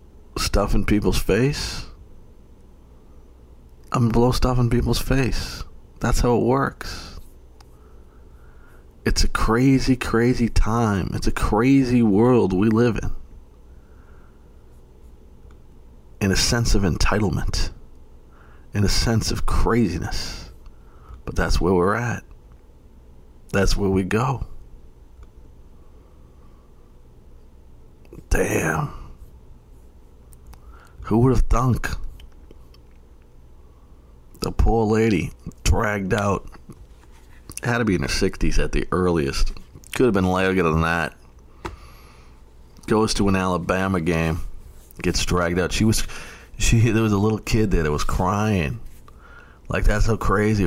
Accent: American